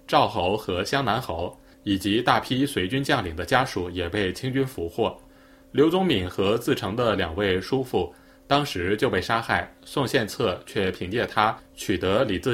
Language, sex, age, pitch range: Chinese, male, 20-39, 95-135 Hz